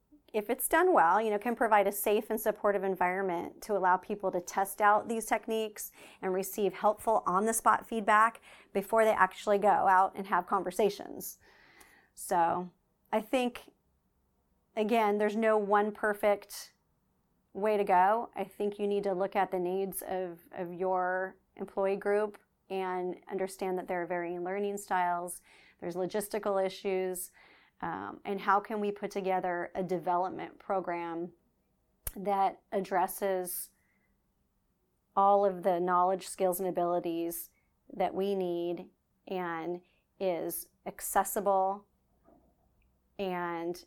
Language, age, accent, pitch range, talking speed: English, 30-49, American, 180-215 Hz, 130 wpm